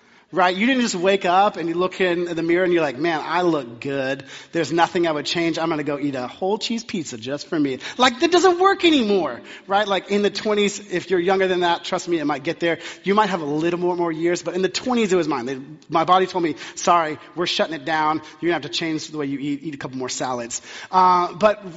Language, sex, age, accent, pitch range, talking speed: English, male, 30-49, American, 155-205 Hz, 270 wpm